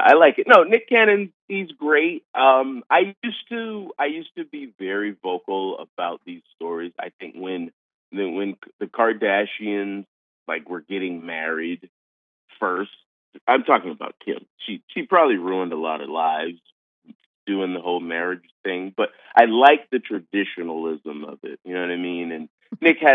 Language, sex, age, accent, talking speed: English, male, 30-49, American, 165 wpm